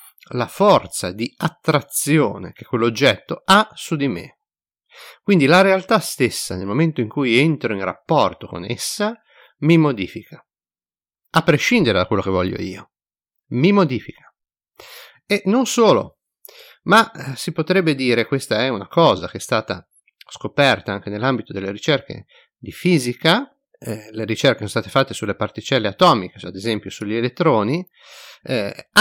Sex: male